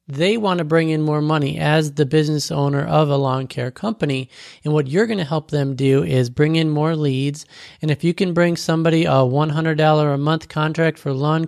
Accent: American